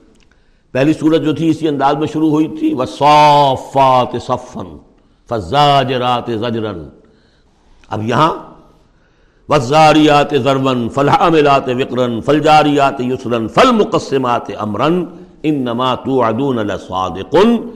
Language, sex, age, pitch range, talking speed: Urdu, male, 60-79, 115-160 Hz, 80 wpm